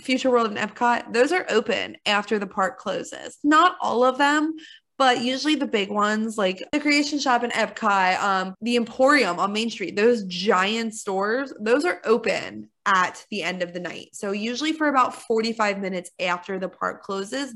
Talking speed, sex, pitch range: 185 wpm, female, 195-240 Hz